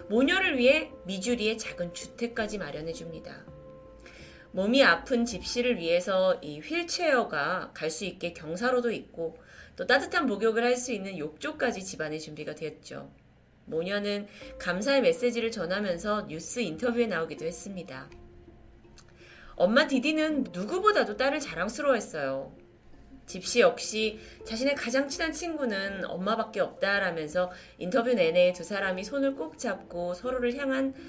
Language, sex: Korean, female